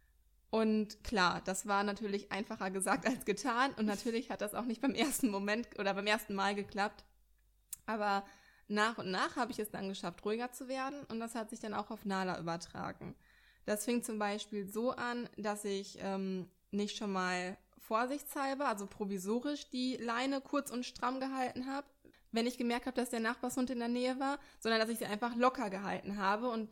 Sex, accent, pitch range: female, German, 195-235 Hz